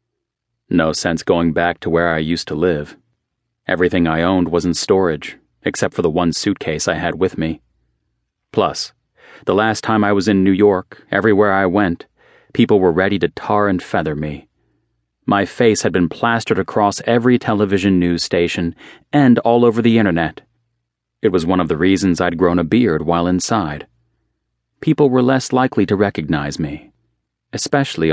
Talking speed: 170 wpm